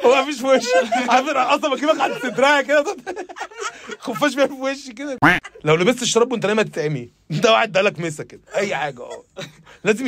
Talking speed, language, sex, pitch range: 195 wpm, Arabic, male, 145-235 Hz